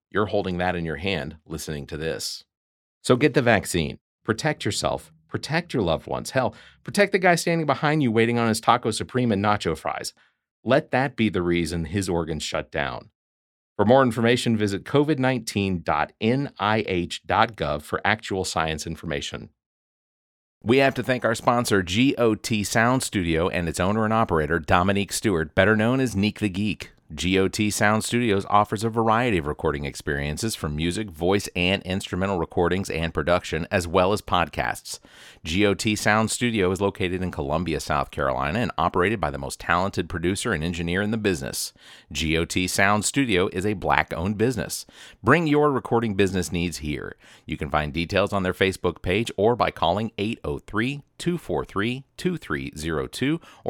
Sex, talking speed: male, 160 wpm